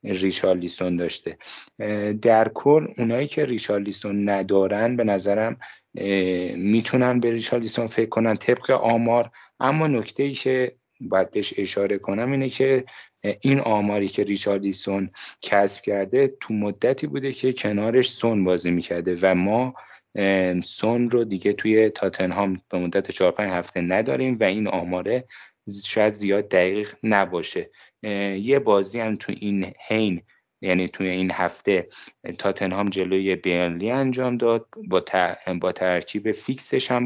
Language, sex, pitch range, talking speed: Persian, male, 95-120 Hz, 130 wpm